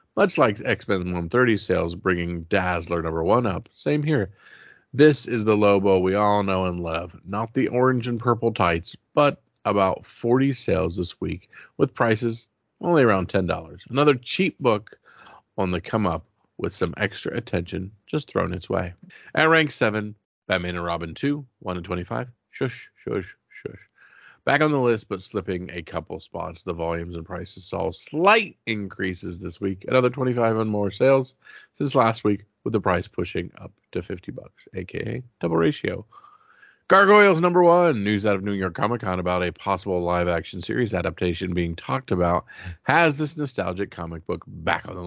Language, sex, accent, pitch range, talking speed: English, male, American, 90-125 Hz, 175 wpm